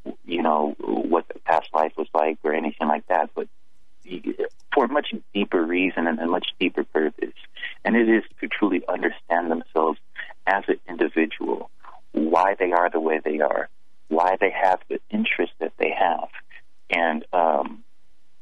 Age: 30-49